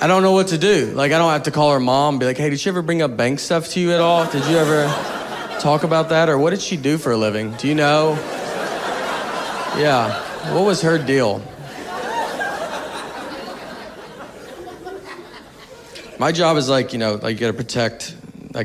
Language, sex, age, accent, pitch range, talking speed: English, male, 30-49, American, 120-155 Hz, 200 wpm